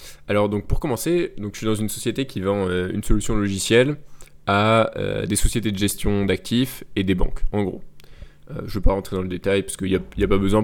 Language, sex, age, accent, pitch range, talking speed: French, male, 20-39, French, 95-110 Hz, 250 wpm